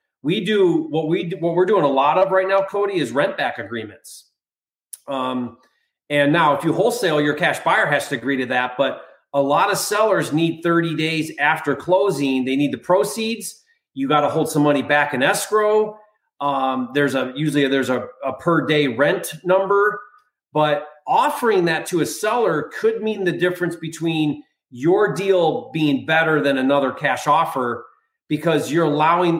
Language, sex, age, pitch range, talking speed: English, male, 30-49, 140-185 Hz, 180 wpm